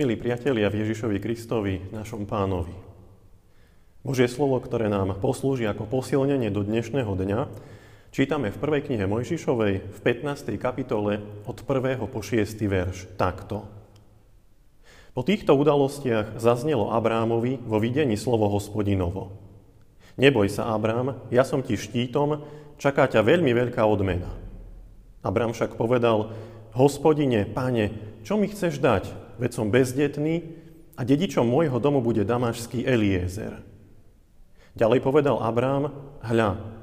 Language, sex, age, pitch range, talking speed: Slovak, male, 40-59, 105-135 Hz, 120 wpm